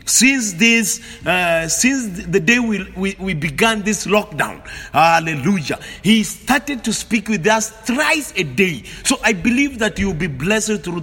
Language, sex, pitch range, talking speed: English, male, 160-210 Hz, 160 wpm